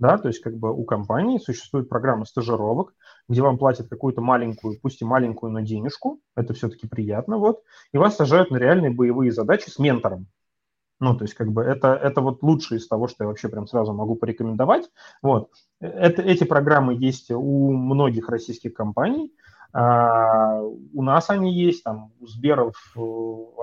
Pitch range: 115-150 Hz